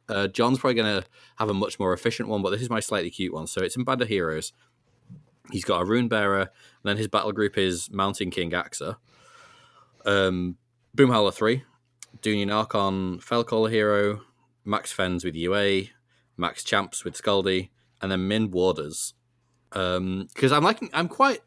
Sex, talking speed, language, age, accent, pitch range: male, 175 wpm, English, 20-39, British, 90-120 Hz